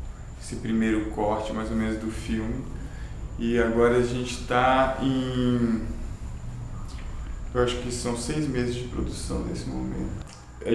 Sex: male